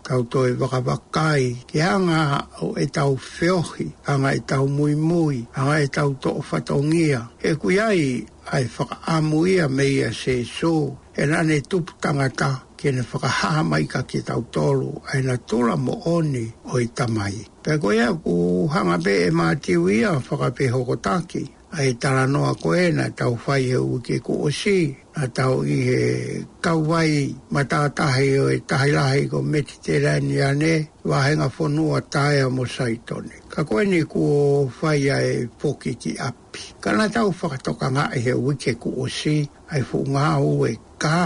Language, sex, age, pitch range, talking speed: English, male, 60-79, 130-160 Hz, 135 wpm